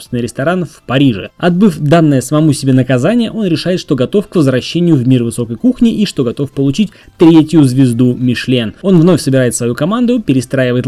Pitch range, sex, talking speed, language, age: 125-165 Hz, male, 170 wpm, Russian, 20-39